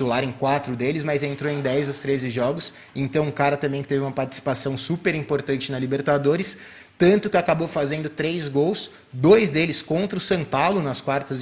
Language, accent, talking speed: Portuguese, Brazilian, 195 wpm